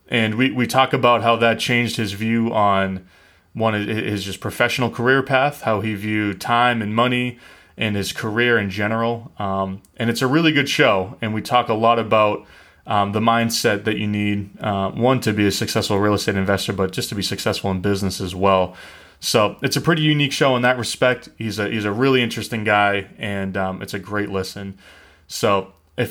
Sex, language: male, English